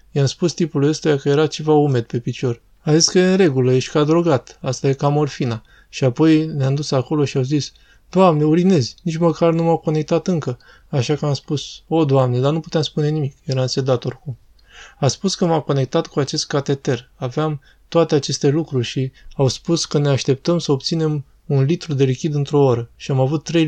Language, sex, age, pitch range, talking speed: Romanian, male, 20-39, 130-155 Hz, 210 wpm